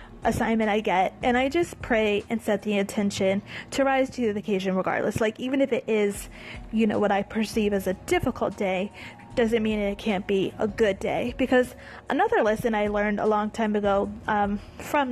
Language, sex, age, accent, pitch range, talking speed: English, female, 20-39, American, 205-250 Hz, 200 wpm